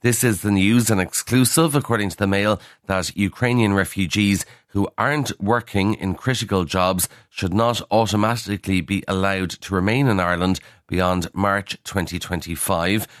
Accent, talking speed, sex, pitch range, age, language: Irish, 140 wpm, male, 90-110 Hz, 30-49, English